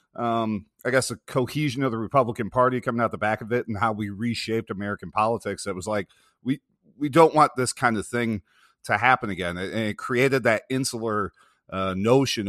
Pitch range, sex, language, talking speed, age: 100-130 Hz, male, English, 200 wpm, 40-59